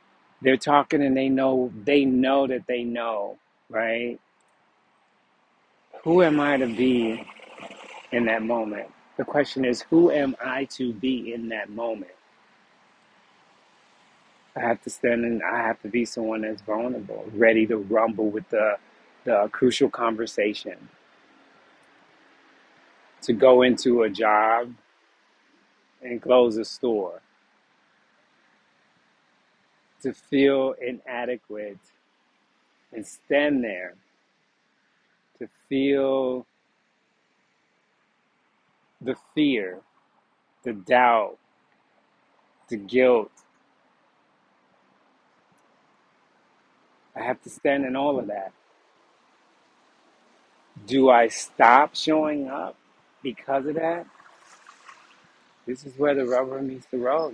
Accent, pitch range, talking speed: American, 115-135 Hz, 100 wpm